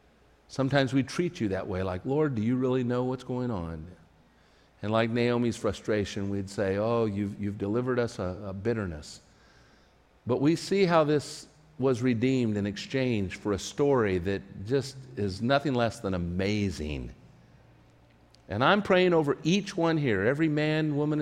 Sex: male